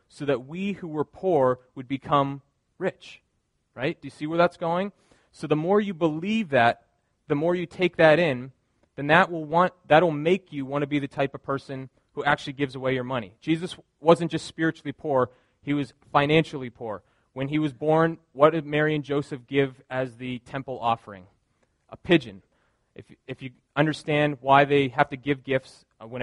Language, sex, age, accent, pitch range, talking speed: English, male, 30-49, American, 130-160 Hz, 190 wpm